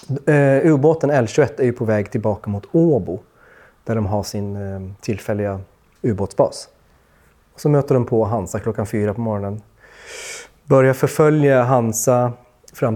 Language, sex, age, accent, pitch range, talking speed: Swedish, male, 30-49, native, 105-130 Hz, 130 wpm